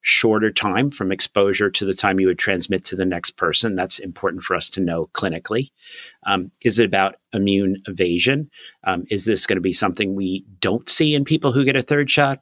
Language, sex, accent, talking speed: English, male, American, 215 wpm